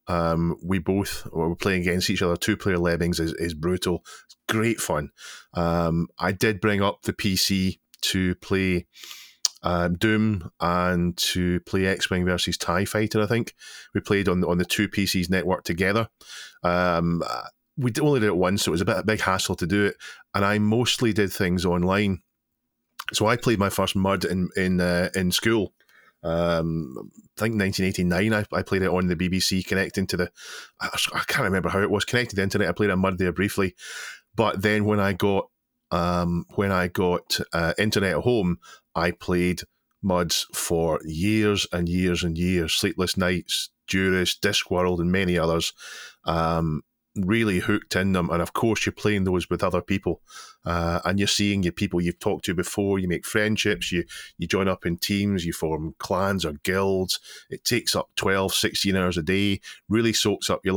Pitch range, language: 90-100 Hz, English